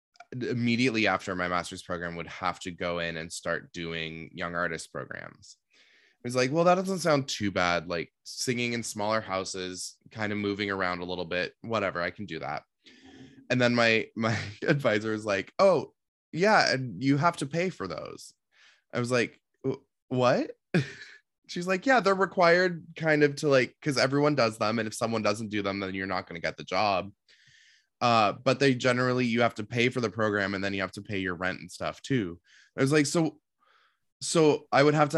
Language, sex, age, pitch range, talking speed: English, male, 20-39, 100-160 Hz, 205 wpm